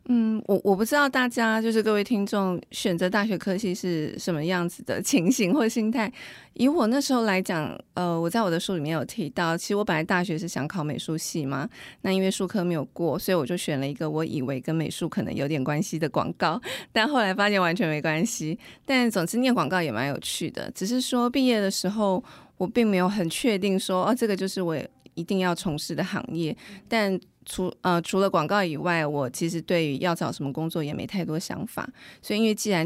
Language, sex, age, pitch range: Chinese, female, 20-39, 165-205 Hz